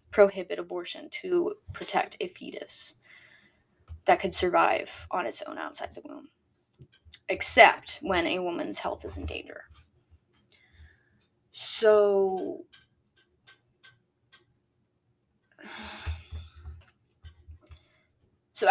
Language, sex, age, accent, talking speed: English, female, 20-39, American, 80 wpm